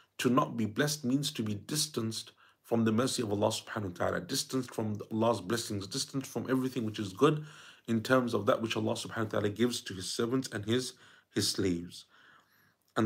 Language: English